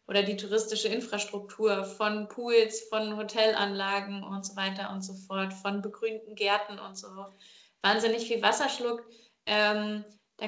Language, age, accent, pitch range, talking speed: German, 20-39, German, 205-235 Hz, 145 wpm